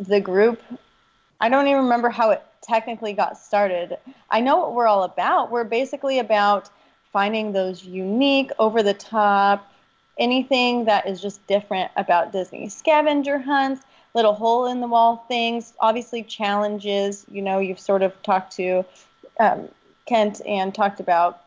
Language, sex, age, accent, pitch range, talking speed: English, female, 30-49, American, 195-235 Hz, 140 wpm